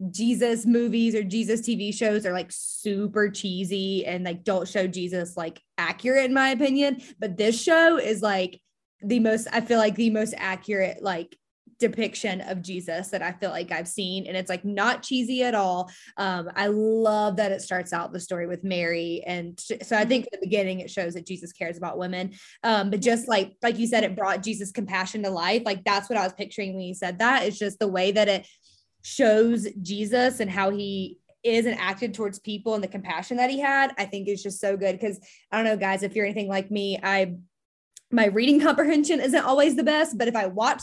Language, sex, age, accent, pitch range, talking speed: English, female, 20-39, American, 185-230 Hz, 220 wpm